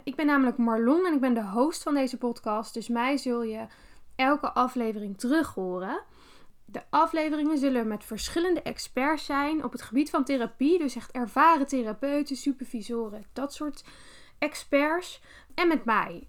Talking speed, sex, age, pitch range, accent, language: 160 wpm, female, 10-29, 235-300 Hz, Dutch, Dutch